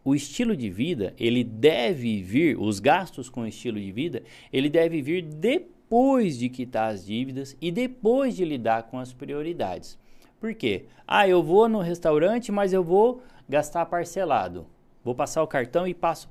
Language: Portuguese